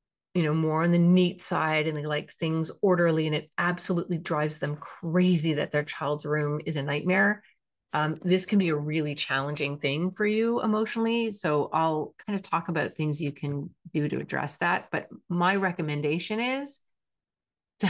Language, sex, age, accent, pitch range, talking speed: English, female, 30-49, American, 150-180 Hz, 180 wpm